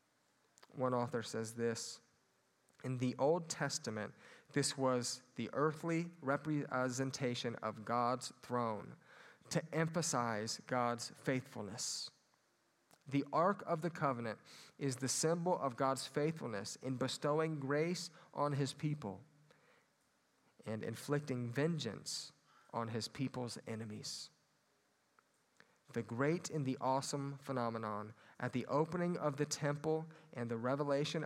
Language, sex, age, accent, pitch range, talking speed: English, male, 30-49, American, 120-150 Hz, 115 wpm